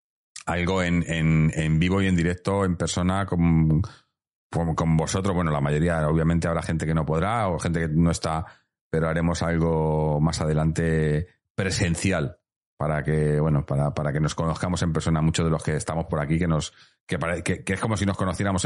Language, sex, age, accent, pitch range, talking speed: Spanish, male, 40-59, Spanish, 85-100 Hz, 195 wpm